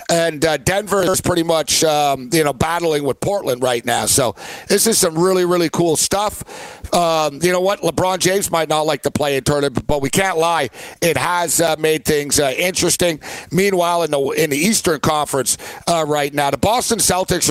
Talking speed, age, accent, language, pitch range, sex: 200 wpm, 60-79, American, English, 140-175 Hz, male